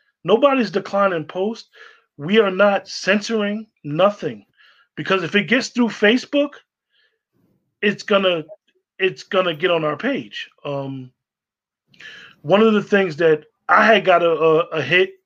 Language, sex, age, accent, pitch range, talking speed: English, male, 20-39, American, 160-210 Hz, 145 wpm